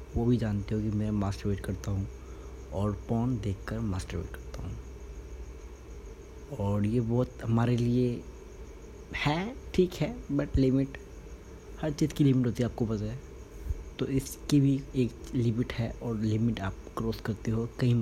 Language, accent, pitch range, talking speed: Hindi, native, 100-130 Hz, 155 wpm